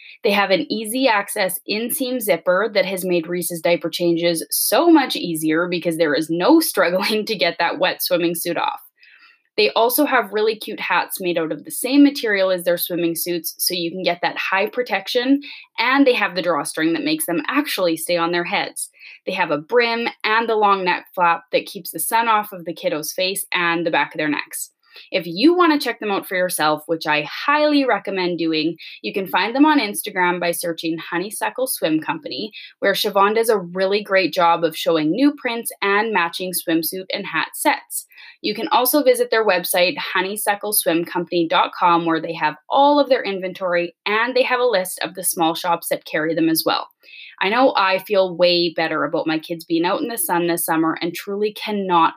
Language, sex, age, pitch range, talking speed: English, female, 20-39, 170-240 Hz, 205 wpm